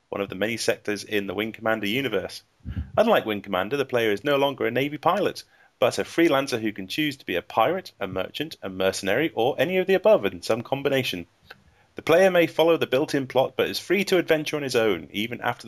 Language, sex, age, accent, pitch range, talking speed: English, male, 30-49, British, 110-155 Hz, 230 wpm